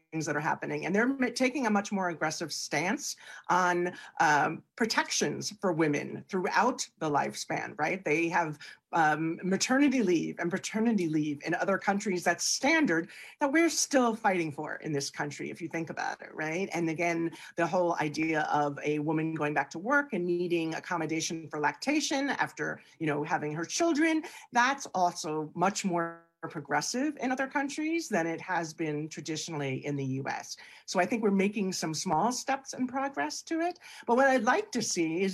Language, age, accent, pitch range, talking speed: English, 40-59, American, 155-235 Hz, 180 wpm